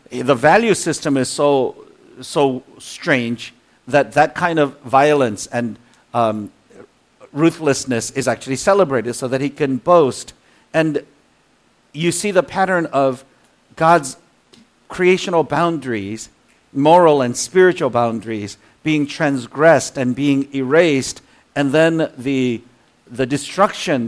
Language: English